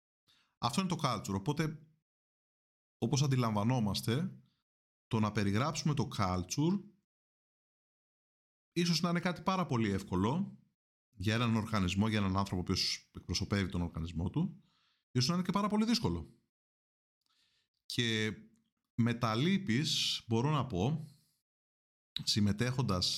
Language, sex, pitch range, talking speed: Greek, male, 95-135 Hz, 120 wpm